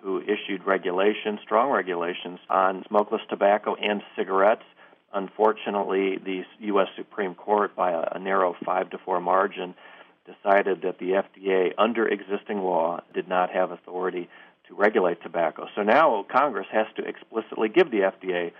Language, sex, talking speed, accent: English, male, 145 wpm, American